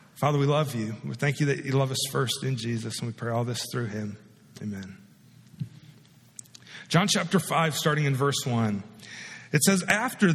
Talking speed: 185 wpm